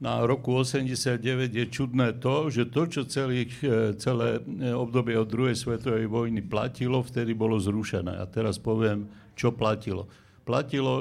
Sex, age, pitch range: male, 60-79, 110-125 Hz